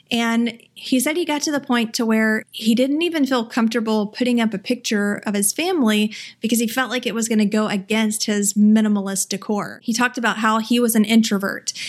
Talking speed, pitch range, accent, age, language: 215 wpm, 210-240 Hz, American, 30-49, English